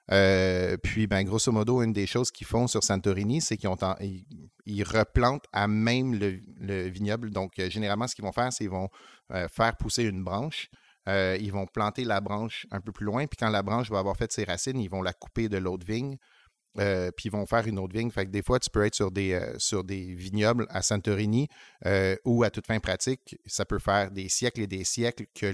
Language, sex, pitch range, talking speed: French, male, 95-110 Hz, 240 wpm